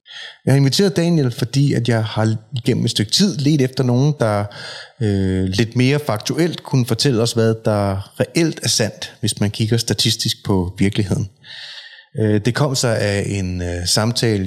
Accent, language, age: native, Danish, 30-49